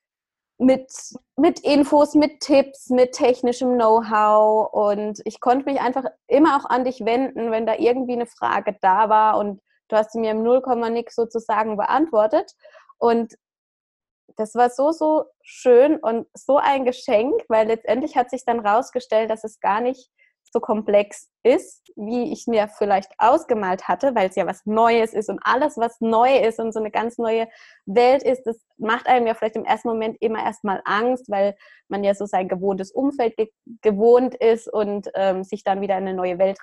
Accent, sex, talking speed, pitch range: German, female, 175 wpm, 210-250 Hz